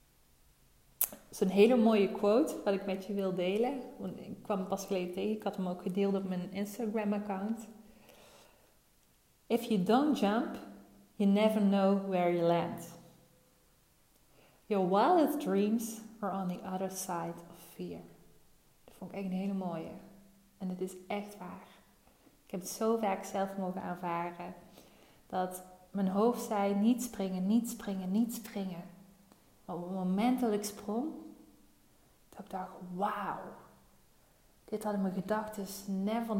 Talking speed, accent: 150 wpm, Dutch